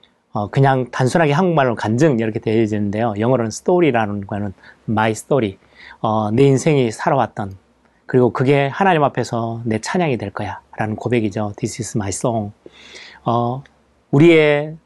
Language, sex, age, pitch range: Korean, male, 30-49, 110-140 Hz